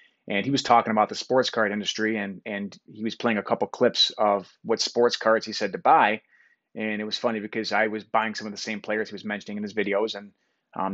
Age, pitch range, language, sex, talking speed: 30-49, 105-115 Hz, English, male, 250 wpm